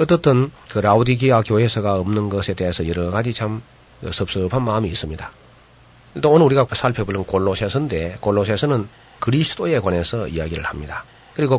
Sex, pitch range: male, 100-130 Hz